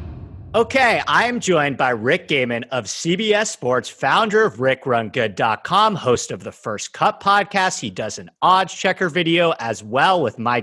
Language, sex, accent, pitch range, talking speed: English, male, American, 125-185 Hz, 165 wpm